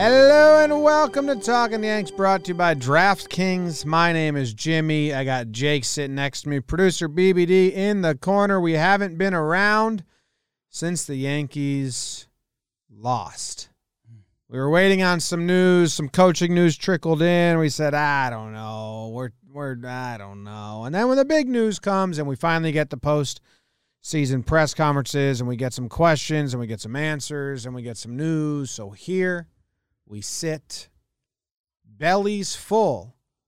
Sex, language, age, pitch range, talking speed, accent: male, English, 30-49, 135-185 Hz, 165 wpm, American